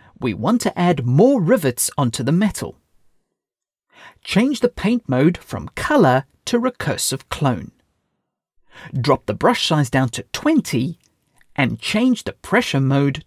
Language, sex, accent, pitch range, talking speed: English, male, British, 130-215 Hz, 135 wpm